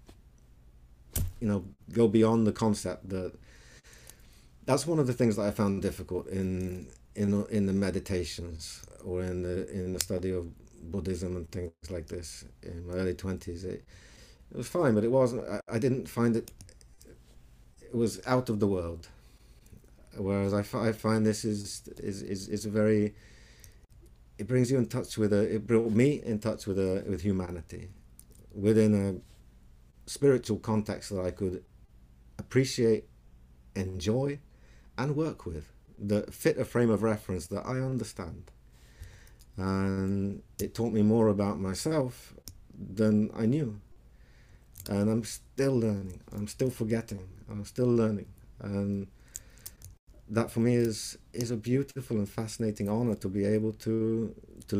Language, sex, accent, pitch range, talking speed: English, male, British, 90-115 Hz, 150 wpm